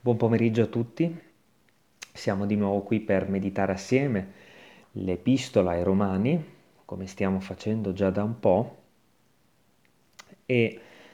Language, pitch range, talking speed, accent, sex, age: Italian, 100-135 Hz, 120 wpm, native, male, 30-49